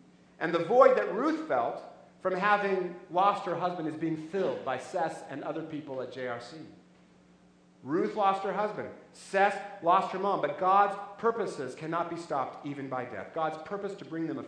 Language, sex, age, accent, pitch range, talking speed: English, male, 40-59, American, 150-200 Hz, 180 wpm